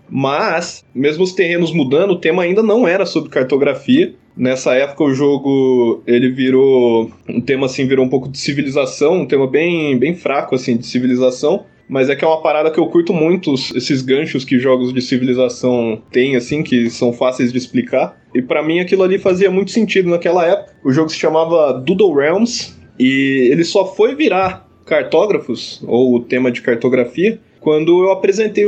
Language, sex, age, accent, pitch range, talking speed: Portuguese, male, 20-39, Brazilian, 130-170 Hz, 180 wpm